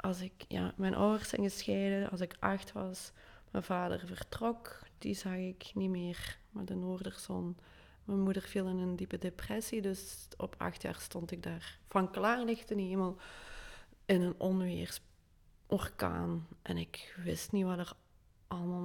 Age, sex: 30-49, female